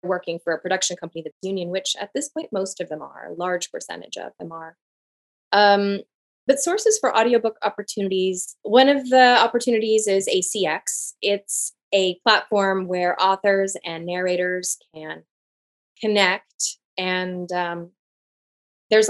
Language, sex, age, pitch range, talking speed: English, female, 20-39, 175-220 Hz, 140 wpm